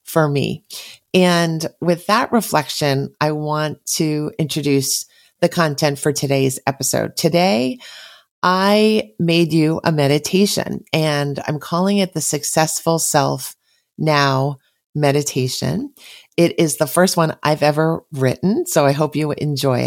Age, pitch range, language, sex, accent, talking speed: 40-59, 145-180 Hz, English, female, American, 130 wpm